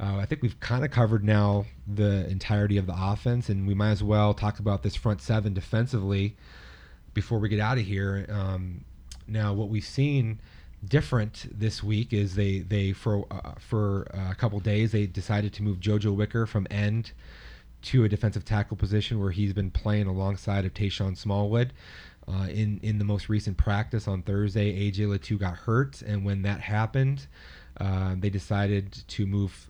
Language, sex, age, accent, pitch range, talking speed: English, male, 30-49, American, 95-105 Hz, 180 wpm